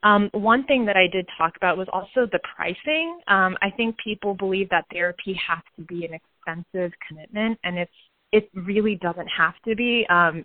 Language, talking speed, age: English, 195 wpm, 20-39